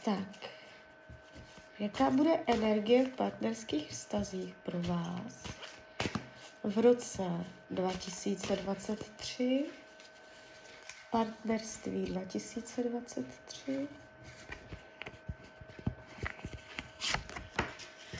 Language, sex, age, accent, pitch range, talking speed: Czech, female, 30-49, native, 190-240 Hz, 45 wpm